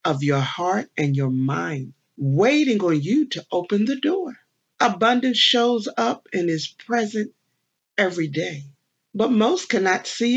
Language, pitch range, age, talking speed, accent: English, 150-235 Hz, 50-69, 145 wpm, American